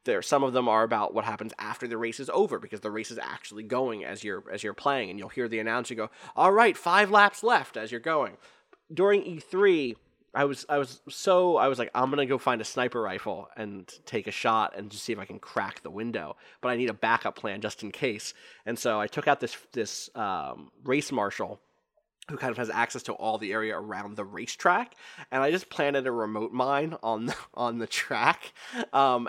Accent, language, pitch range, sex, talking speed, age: American, English, 115-145 Hz, male, 230 wpm, 20-39